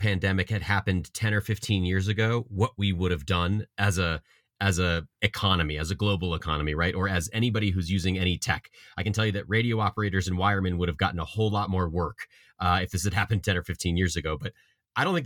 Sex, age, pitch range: male, 30-49, 95-110 Hz